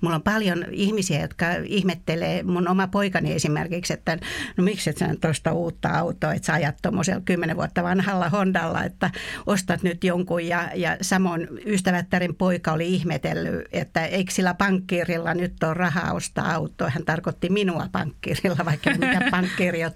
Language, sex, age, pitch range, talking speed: Finnish, female, 60-79, 170-200 Hz, 160 wpm